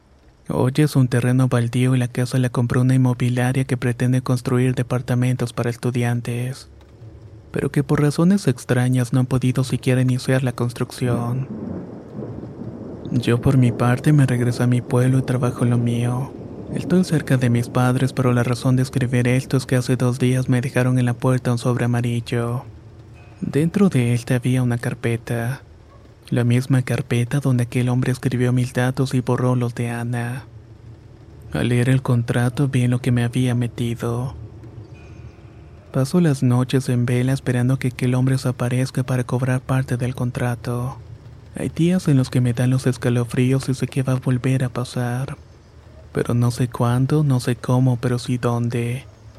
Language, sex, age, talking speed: Spanish, male, 30-49, 170 wpm